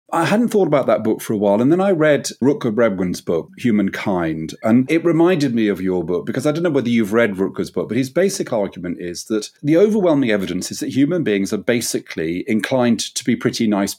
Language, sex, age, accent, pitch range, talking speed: English, male, 40-59, British, 125-165 Hz, 225 wpm